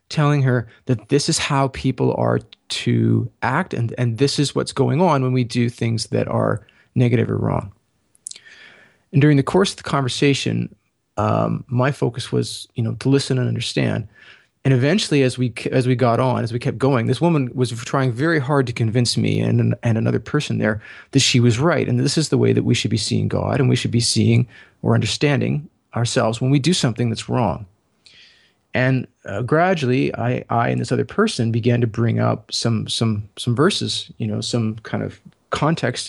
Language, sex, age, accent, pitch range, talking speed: English, male, 30-49, American, 115-140 Hz, 200 wpm